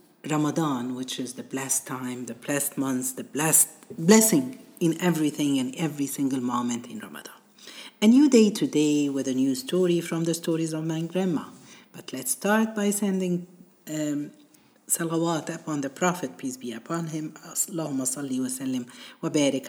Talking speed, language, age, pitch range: 165 wpm, Arabic, 50-69, 135-190 Hz